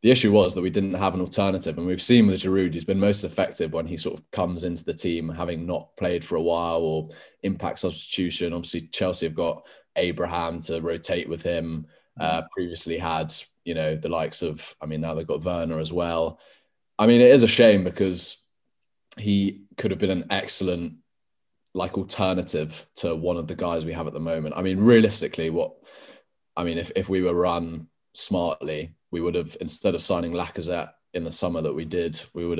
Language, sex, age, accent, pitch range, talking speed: English, male, 20-39, British, 80-90 Hz, 205 wpm